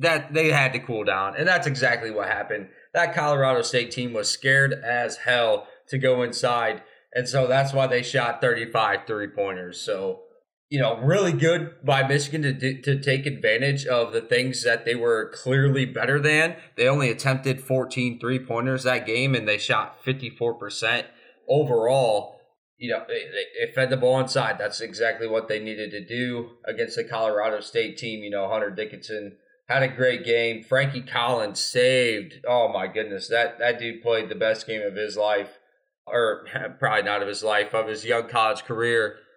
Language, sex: English, male